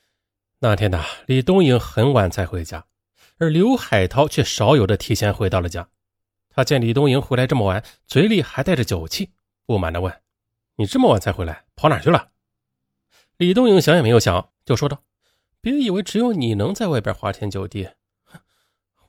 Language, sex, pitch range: Chinese, male, 95-150 Hz